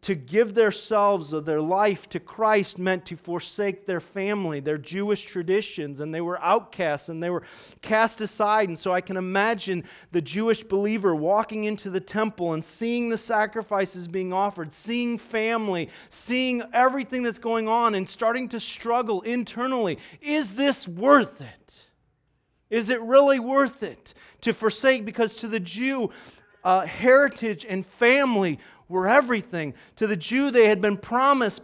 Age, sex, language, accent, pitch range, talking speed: 40-59, male, English, American, 185-230 Hz, 160 wpm